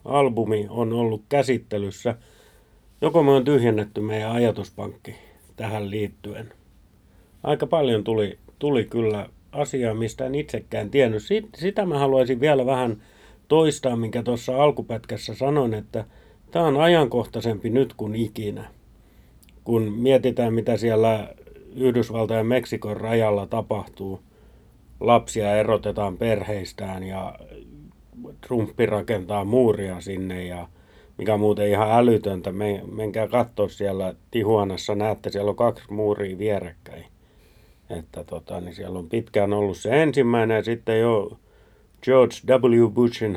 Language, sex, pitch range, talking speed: Finnish, male, 100-120 Hz, 120 wpm